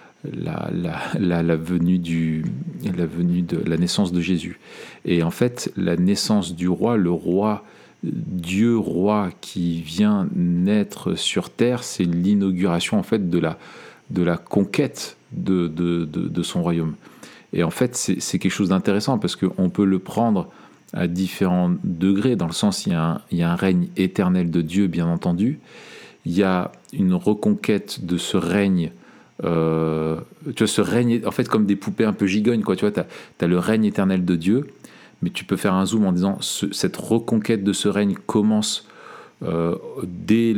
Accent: French